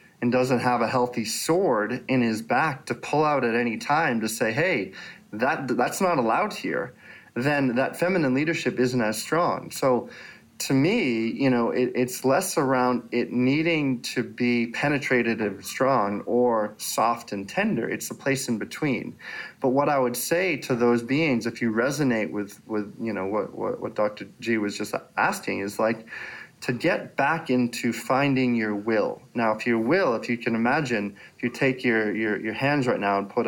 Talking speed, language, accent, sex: 190 wpm, English, American, male